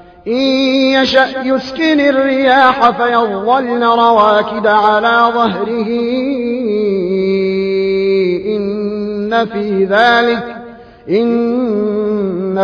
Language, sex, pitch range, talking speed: Arabic, male, 190-240 Hz, 55 wpm